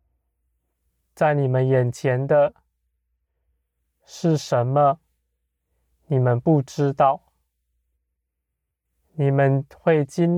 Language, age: Chinese, 20-39